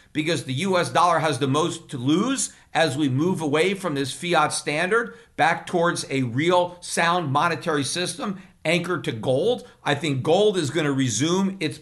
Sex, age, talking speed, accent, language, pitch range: male, 50-69, 180 wpm, American, English, 145-180 Hz